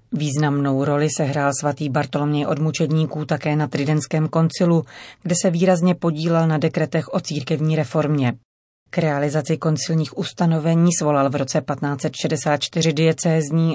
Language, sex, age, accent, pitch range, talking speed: Czech, female, 30-49, native, 145-170 Hz, 125 wpm